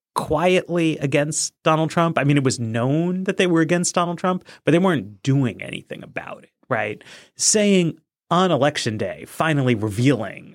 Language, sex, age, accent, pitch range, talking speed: English, male, 30-49, American, 115-165 Hz, 165 wpm